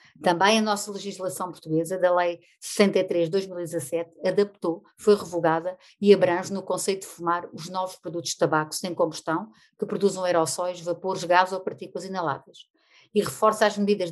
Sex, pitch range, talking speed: female, 175-205 Hz, 160 wpm